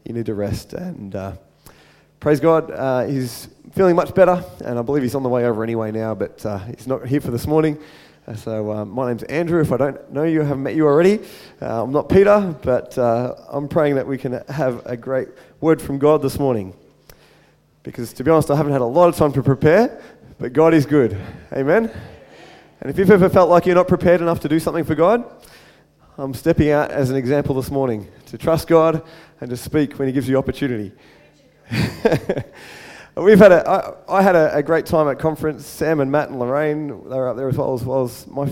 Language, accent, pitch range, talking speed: English, Australian, 125-160 Hz, 225 wpm